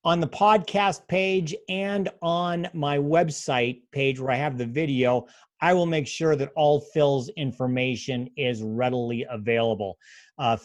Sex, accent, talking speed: male, American, 145 wpm